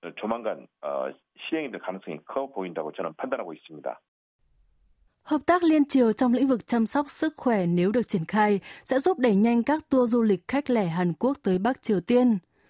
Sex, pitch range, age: female, 195-245 Hz, 20-39